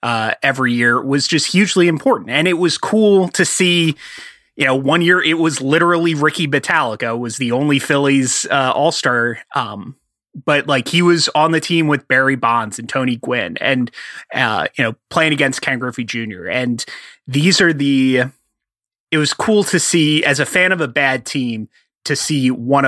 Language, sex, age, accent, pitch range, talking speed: English, male, 30-49, American, 125-160 Hz, 185 wpm